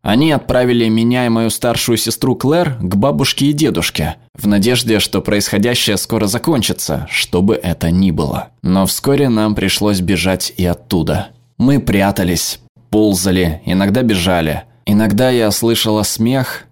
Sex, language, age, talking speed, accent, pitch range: male, Russian, 20-39, 135 wpm, native, 95-120 Hz